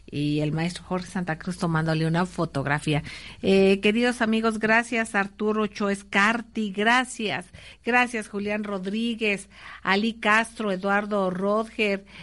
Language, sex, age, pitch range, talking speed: Spanish, female, 50-69, 190-225 Hz, 120 wpm